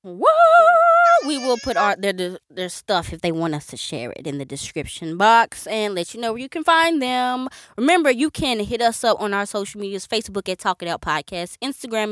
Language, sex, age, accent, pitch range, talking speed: English, female, 20-39, American, 180-260 Hz, 225 wpm